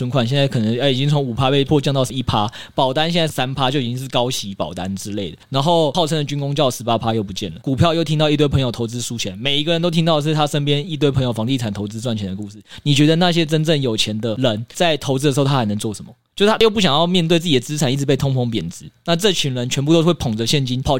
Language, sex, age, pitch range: Chinese, male, 20-39, 120-160 Hz